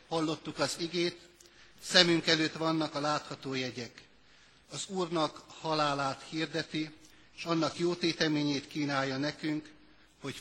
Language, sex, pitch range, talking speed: Hungarian, male, 135-165 Hz, 110 wpm